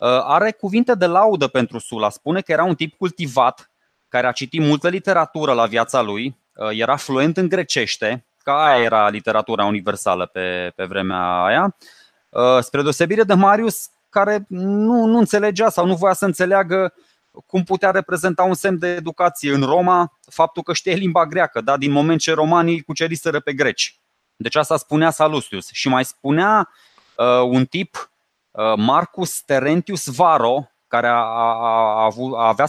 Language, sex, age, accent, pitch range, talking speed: Romanian, male, 20-39, native, 130-175 Hz, 160 wpm